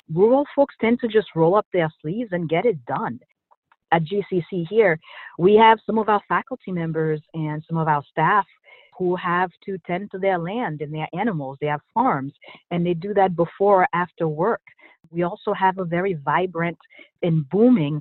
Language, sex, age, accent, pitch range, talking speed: English, female, 40-59, American, 155-190 Hz, 190 wpm